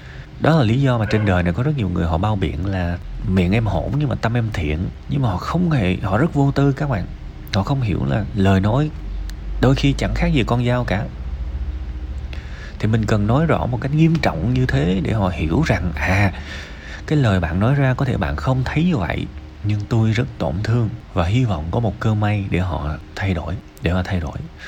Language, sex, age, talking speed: Vietnamese, male, 20-39, 235 wpm